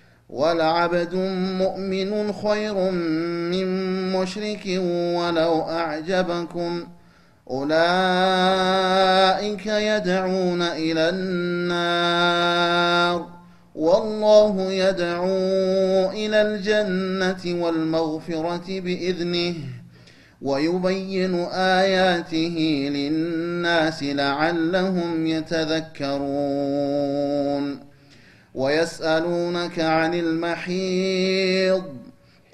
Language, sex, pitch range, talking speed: Amharic, male, 160-185 Hz, 50 wpm